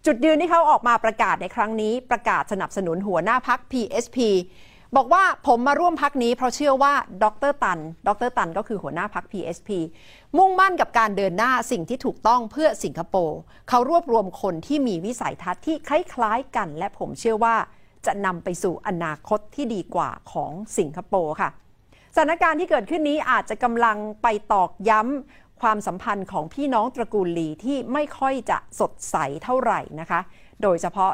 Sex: female